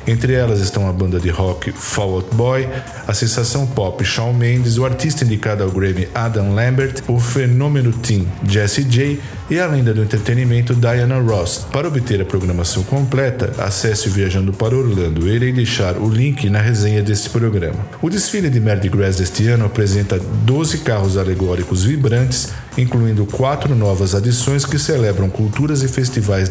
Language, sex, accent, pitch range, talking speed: Portuguese, male, Brazilian, 100-130 Hz, 165 wpm